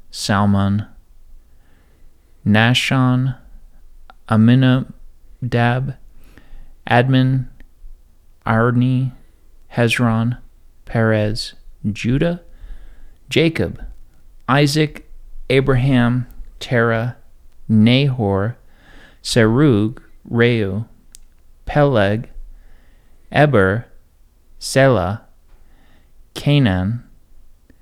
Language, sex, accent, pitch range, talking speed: English, male, American, 85-125 Hz, 40 wpm